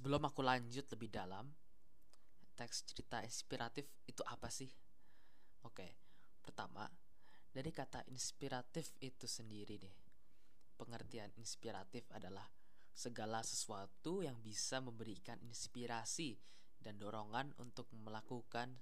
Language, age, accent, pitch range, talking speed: Indonesian, 20-39, native, 105-130 Hz, 100 wpm